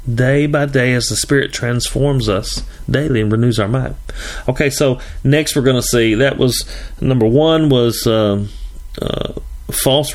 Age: 40-59